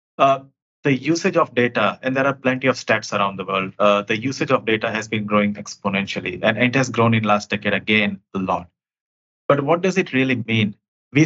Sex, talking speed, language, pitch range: male, 215 wpm, English, 105-125 Hz